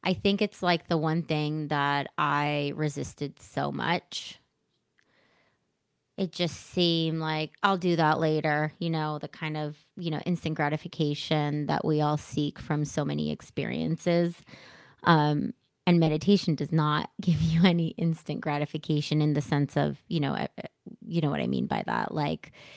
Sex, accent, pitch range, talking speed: female, American, 145-160 Hz, 160 wpm